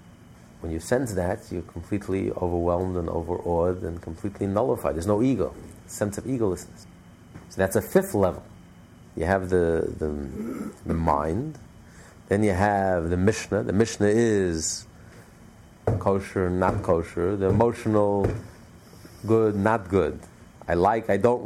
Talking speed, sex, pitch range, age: 135 wpm, male, 90-115 Hz, 50-69